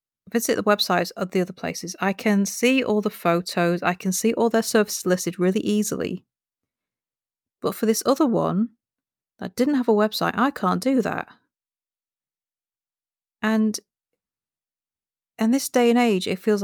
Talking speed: 160 wpm